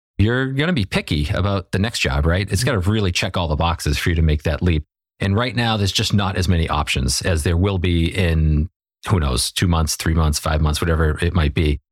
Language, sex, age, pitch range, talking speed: English, male, 40-59, 85-105 Hz, 250 wpm